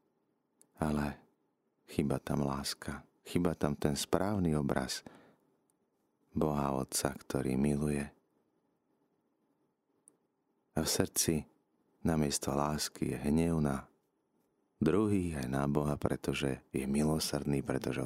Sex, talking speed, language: male, 95 wpm, Slovak